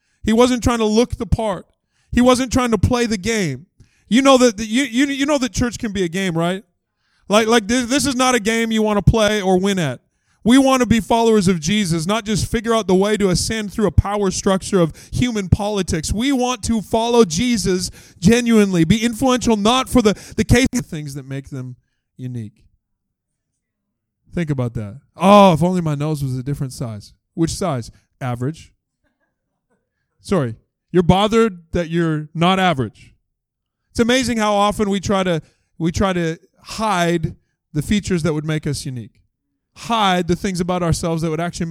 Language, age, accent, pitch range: English, 20-39, American, 165-230 Hz